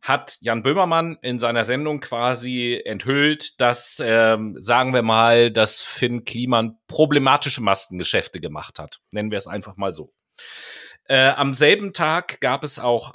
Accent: German